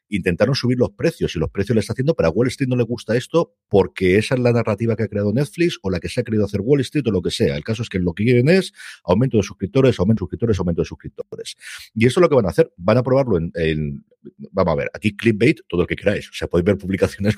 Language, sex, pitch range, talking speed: Spanish, male, 80-120 Hz, 290 wpm